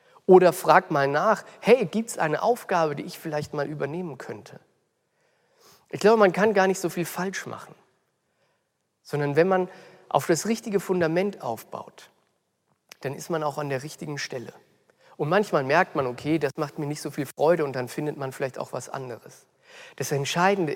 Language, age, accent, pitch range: German, 50-69, German, 150-200 Hz